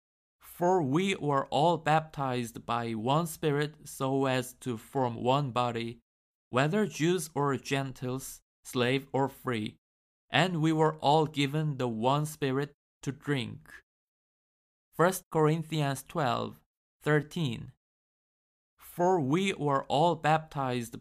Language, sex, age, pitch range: Korean, male, 20-39, 125-155 Hz